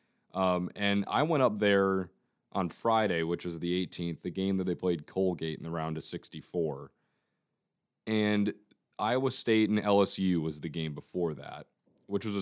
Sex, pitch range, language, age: male, 90-115 Hz, English, 20-39